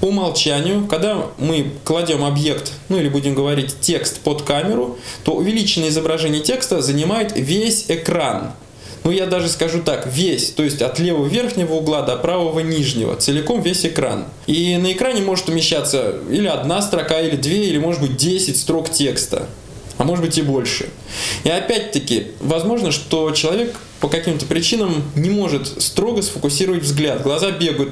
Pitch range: 145-190 Hz